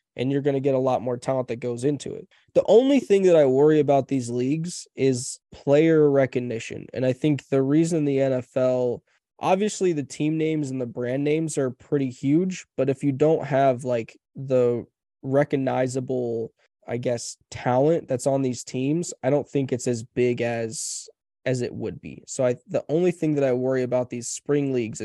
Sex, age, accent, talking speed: male, 20-39, American, 195 wpm